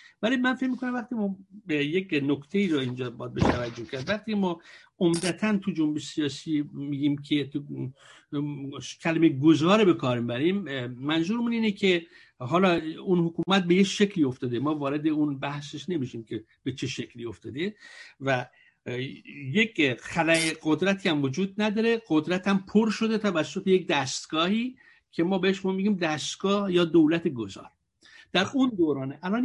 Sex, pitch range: male, 150-200 Hz